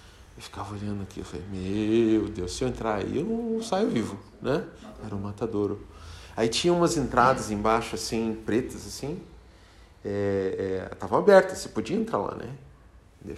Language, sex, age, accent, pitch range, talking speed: Portuguese, male, 40-59, Brazilian, 110-165 Hz, 170 wpm